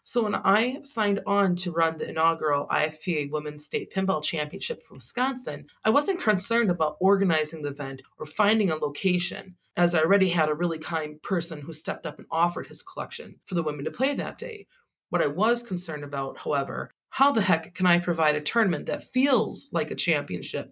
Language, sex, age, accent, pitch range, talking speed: English, female, 30-49, American, 160-215 Hz, 195 wpm